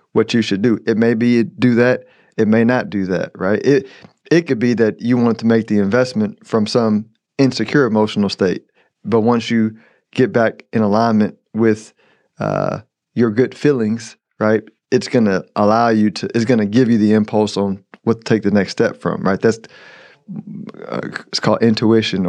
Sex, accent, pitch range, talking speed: male, American, 105-120 Hz, 195 wpm